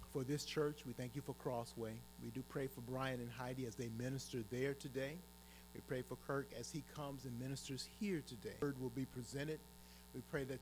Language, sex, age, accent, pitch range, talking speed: English, male, 30-49, American, 120-150 Hz, 215 wpm